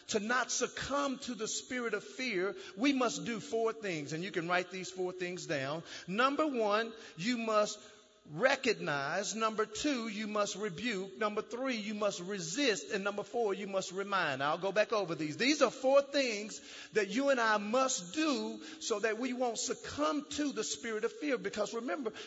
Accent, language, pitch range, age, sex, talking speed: American, English, 210-275 Hz, 40-59, male, 185 wpm